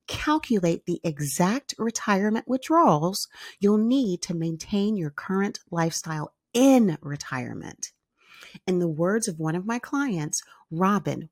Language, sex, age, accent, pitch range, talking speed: English, female, 40-59, American, 155-220 Hz, 120 wpm